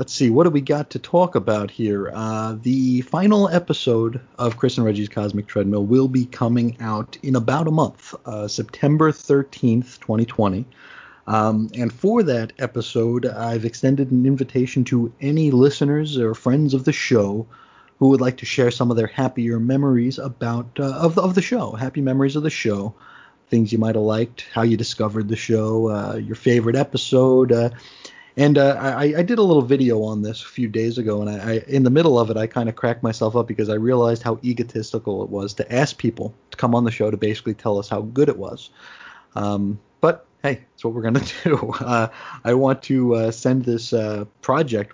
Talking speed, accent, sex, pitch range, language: 205 wpm, American, male, 110-130 Hz, English